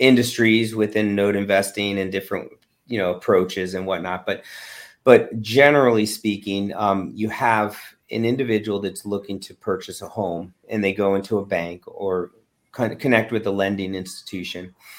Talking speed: 160 wpm